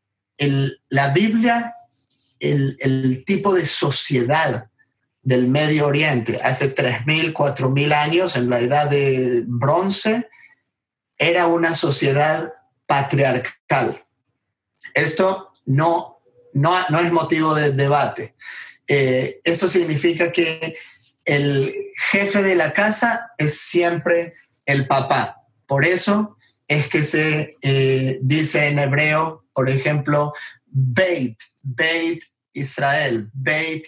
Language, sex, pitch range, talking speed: English, male, 130-170 Hz, 105 wpm